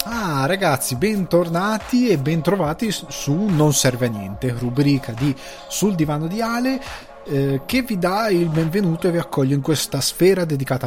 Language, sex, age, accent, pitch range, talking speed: Italian, male, 20-39, native, 125-155 Hz, 160 wpm